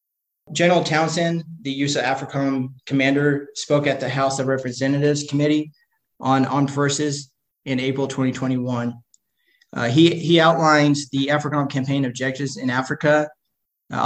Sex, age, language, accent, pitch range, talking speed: male, 20-39, English, American, 130-145 Hz, 130 wpm